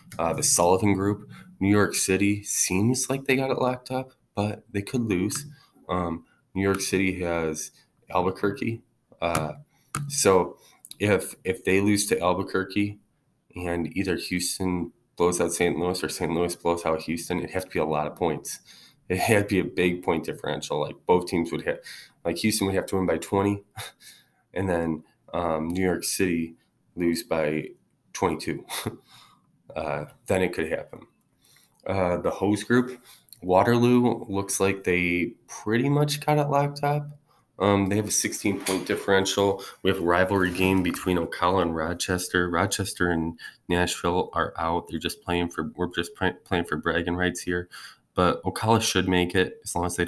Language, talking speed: English, 170 wpm